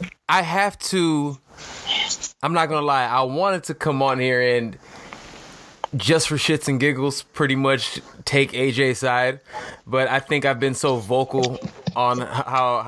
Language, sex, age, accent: English, male, 20-39, American